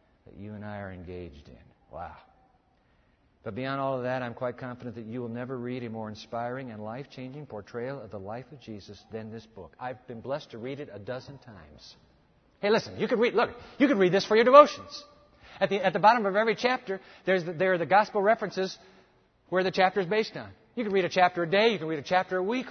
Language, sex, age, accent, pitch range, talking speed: English, male, 50-69, American, 125-185 Hz, 245 wpm